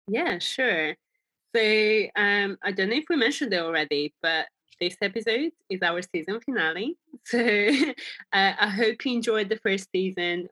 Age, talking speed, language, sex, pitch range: 20-39, 160 wpm, English, female, 180-225 Hz